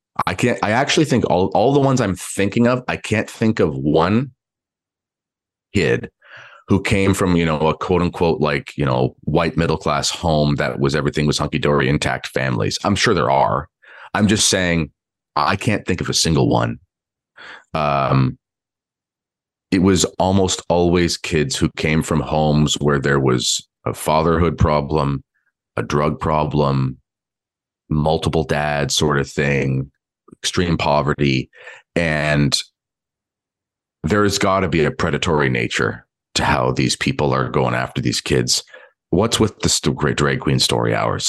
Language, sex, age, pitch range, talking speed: English, male, 30-49, 75-95 Hz, 155 wpm